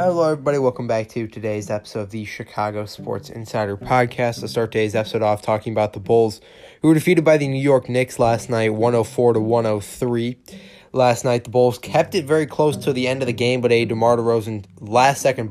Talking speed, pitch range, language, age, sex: 205 wpm, 115-130 Hz, English, 20-39, male